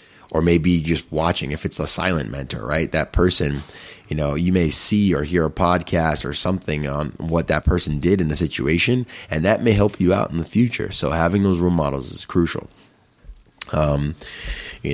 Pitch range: 75-90 Hz